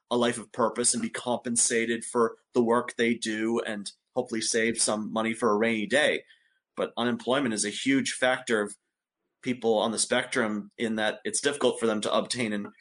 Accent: American